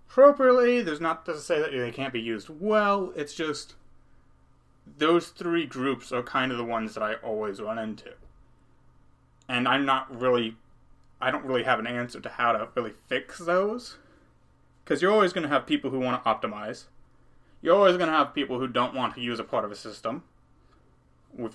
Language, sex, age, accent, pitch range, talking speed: English, male, 30-49, American, 110-155 Hz, 195 wpm